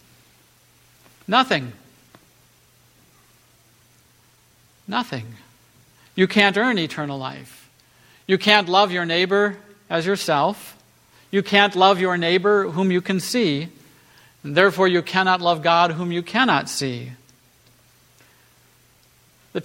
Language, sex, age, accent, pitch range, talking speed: English, male, 50-69, American, 150-200 Hz, 100 wpm